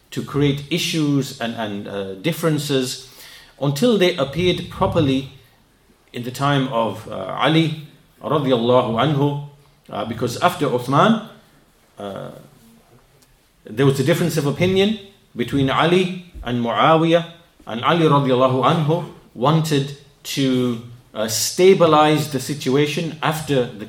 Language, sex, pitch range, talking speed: English, male, 125-165 Hz, 105 wpm